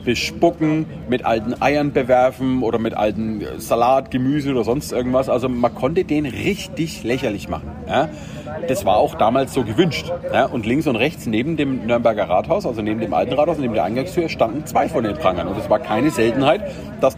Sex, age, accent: male, 40-59, German